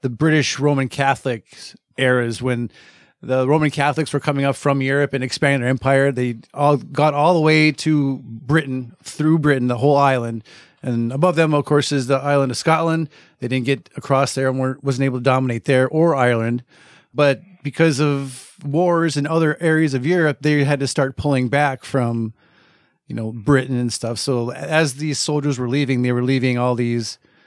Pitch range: 125-155 Hz